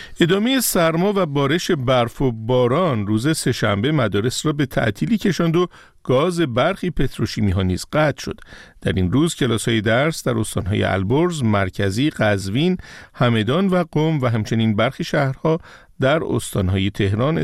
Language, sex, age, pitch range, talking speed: Persian, male, 50-69, 110-170 Hz, 140 wpm